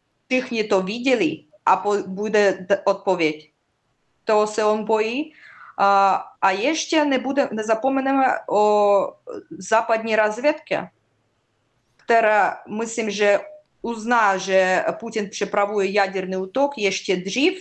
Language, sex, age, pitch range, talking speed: Czech, female, 20-39, 195-235 Hz, 100 wpm